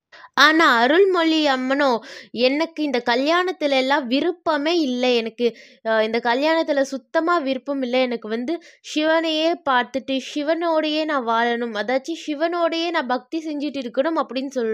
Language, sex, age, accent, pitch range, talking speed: Tamil, female, 20-39, native, 245-325 Hz, 120 wpm